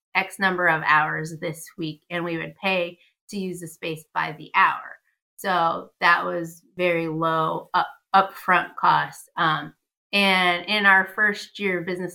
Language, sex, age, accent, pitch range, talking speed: English, female, 30-49, American, 165-195 Hz, 155 wpm